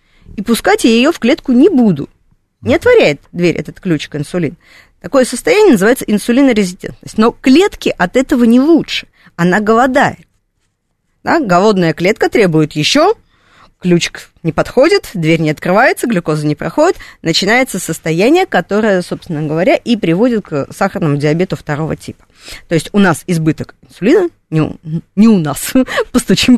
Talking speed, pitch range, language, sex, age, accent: 145 wpm, 165-245 Hz, Russian, female, 20-39, native